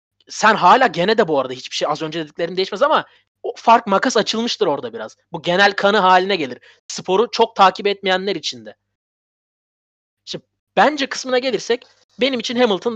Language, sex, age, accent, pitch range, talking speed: Turkish, male, 30-49, native, 130-200 Hz, 165 wpm